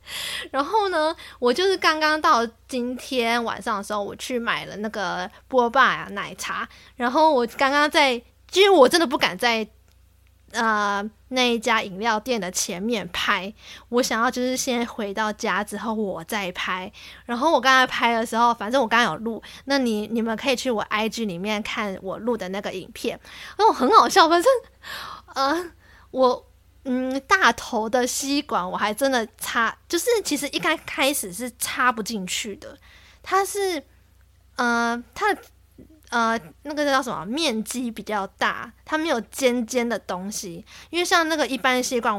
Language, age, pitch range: Chinese, 20-39, 215-275 Hz